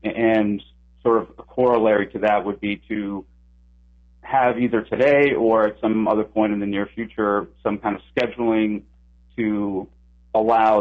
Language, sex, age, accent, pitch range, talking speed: English, male, 40-59, American, 80-115 Hz, 155 wpm